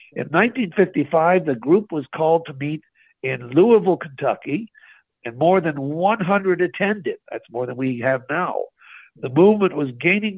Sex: male